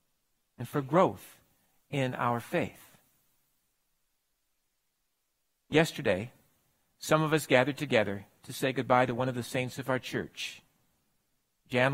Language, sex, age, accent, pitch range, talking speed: English, male, 50-69, American, 135-225 Hz, 120 wpm